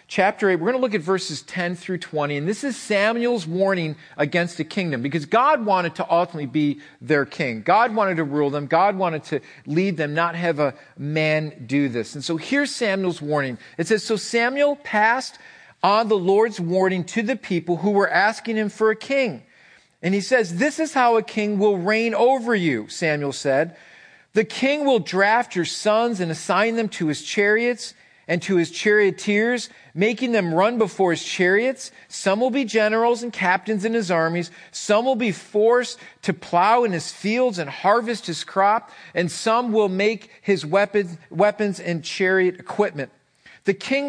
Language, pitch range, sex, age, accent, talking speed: English, 170-225 Hz, male, 40-59, American, 185 wpm